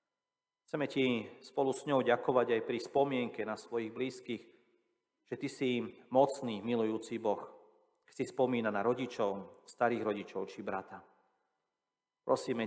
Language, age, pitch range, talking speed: Slovak, 40-59, 100-125 Hz, 135 wpm